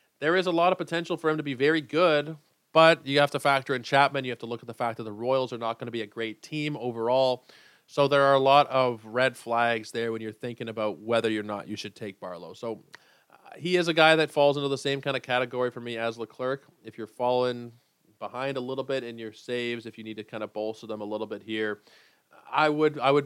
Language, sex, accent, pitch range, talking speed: English, male, American, 110-140 Hz, 265 wpm